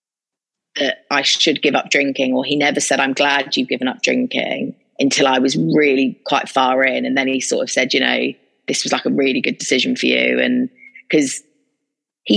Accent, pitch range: British, 130-150 Hz